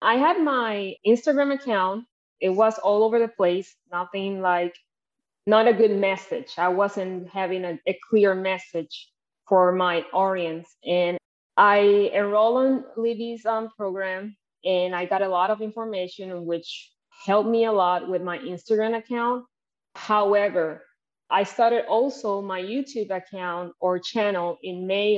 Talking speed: 145 wpm